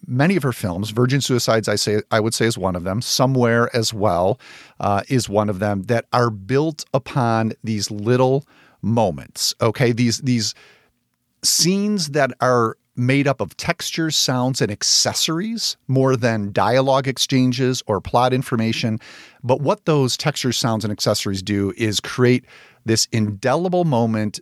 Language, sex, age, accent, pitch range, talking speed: English, male, 40-59, American, 110-135 Hz, 155 wpm